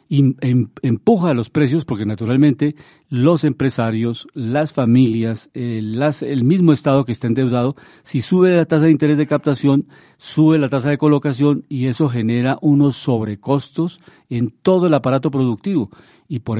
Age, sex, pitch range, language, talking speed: 50-69, male, 120-150 Hz, Spanish, 160 wpm